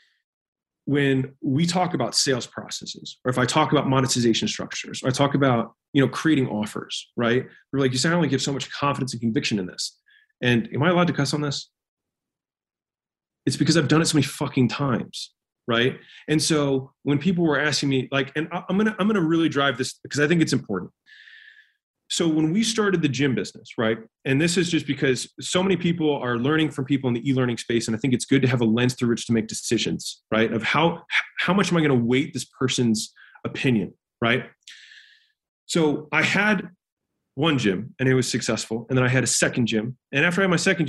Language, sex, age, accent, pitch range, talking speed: English, male, 30-49, American, 125-160 Hz, 220 wpm